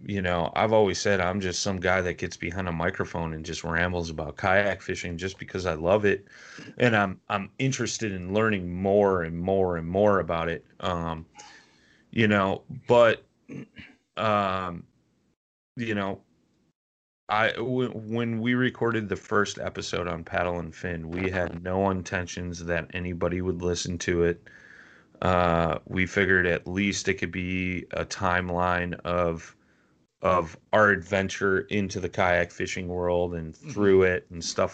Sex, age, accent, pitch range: male, 30-49, American, 85-100 Hz